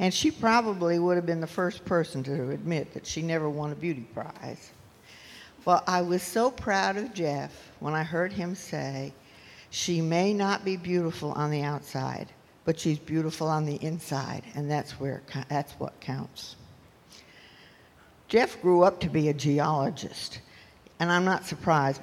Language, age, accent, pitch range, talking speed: English, 60-79, American, 145-215 Hz, 165 wpm